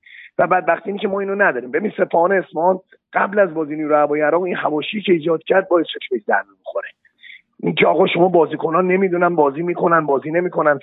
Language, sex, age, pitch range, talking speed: Persian, male, 40-59, 175-220 Hz, 185 wpm